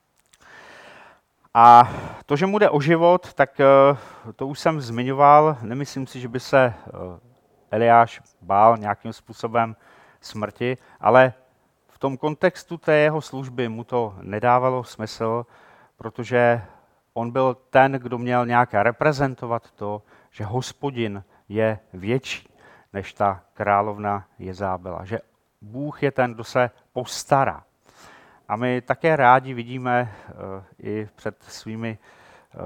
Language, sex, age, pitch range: Czech, male, 40-59, 105-130 Hz